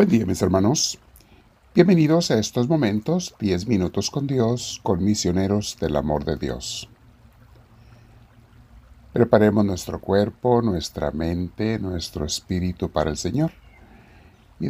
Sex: male